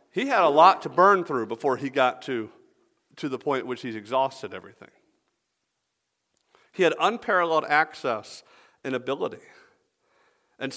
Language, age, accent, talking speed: English, 50-69, American, 140 wpm